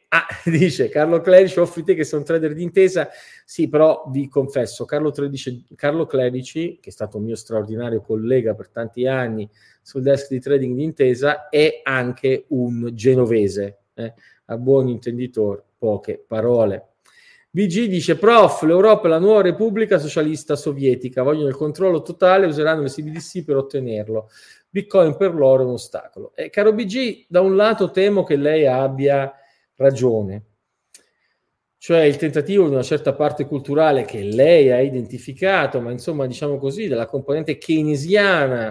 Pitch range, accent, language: 130-170 Hz, native, Italian